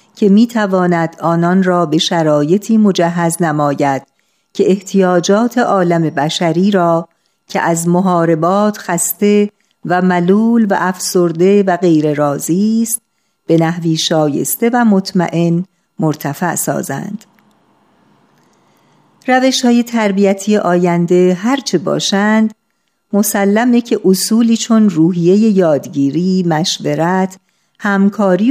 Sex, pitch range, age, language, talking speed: female, 165-210 Hz, 50-69, Persian, 100 wpm